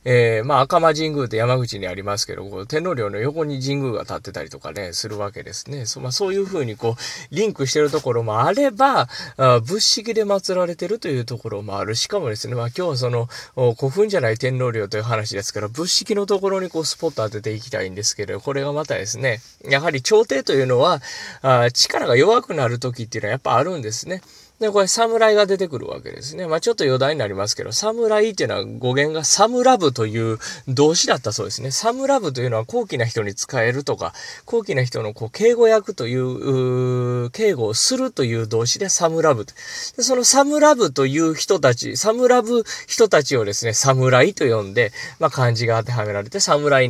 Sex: male